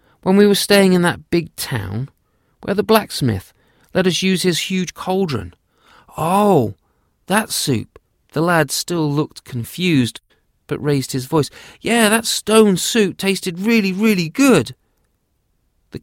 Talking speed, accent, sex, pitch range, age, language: 140 wpm, British, male, 110-160 Hz, 30-49, English